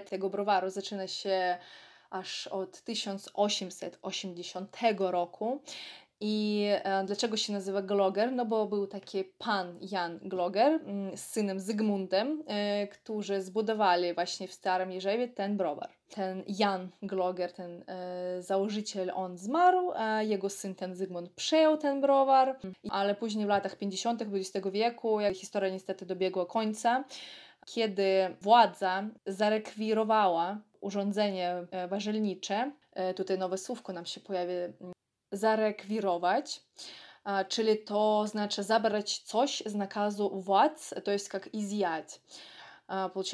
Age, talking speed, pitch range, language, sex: 20-39, 115 wpm, 190-215 Hz, Polish, female